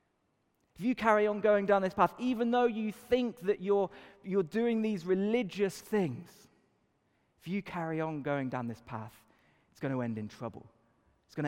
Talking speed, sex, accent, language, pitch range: 185 wpm, male, British, English, 120-175 Hz